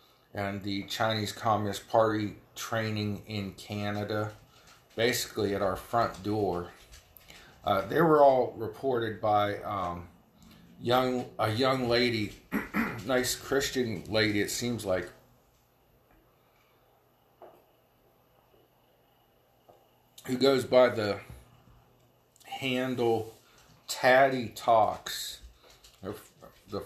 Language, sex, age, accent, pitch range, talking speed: English, male, 40-59, American, 105-125 Hz, 85 wpm